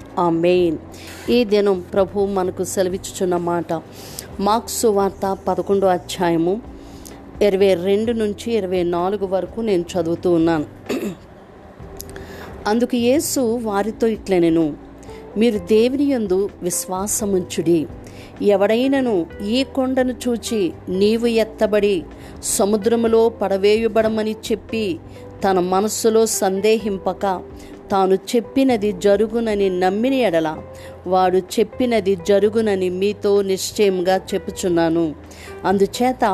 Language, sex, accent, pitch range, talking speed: Telugu, female, native, 180-220 Hz, 85 wpm